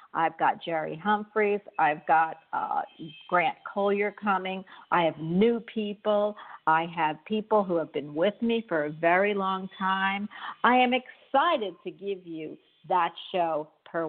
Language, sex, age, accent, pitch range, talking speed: English, female, 50-69, American, 170-220 Hz, 155 wpm